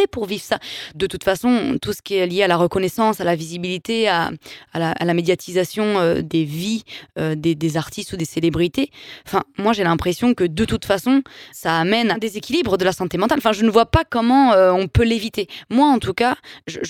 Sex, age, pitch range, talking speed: female, 20-39, 185-235 Hz, 225 wpm